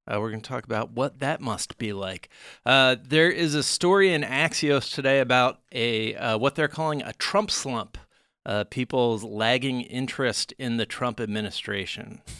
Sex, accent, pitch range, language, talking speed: male, American, 100-130 Hz, English, 175 wpm